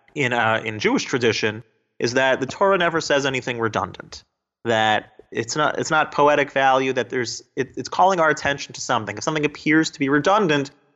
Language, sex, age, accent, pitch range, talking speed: English, male, 30-49, American, 130-165 Hz, 190 wpm